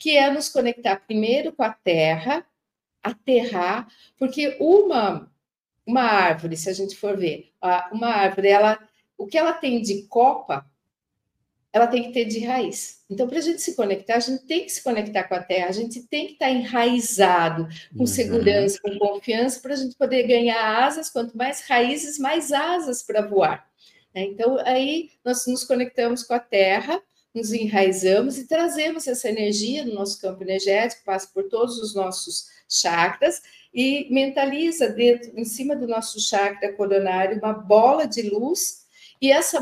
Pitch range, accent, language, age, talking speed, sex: 200-275 Hz, Brazilian, Portuguese, 50-69, 165 wpm, female